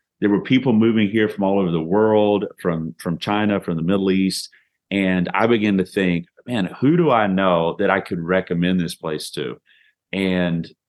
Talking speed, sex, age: 195 wpm, male, 30-49